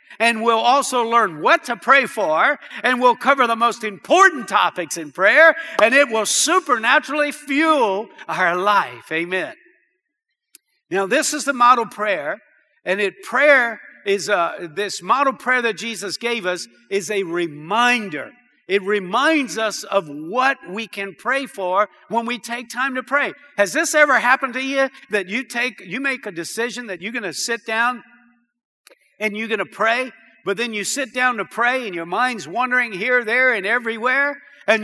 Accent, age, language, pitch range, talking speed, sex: American, 60-79, English, 215-275 Hz, 175 wpm, male